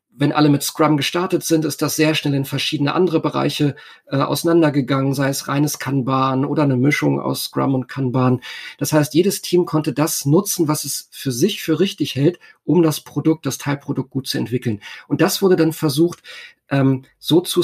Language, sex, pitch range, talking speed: German, male, 140-165 Hz, 195 wpm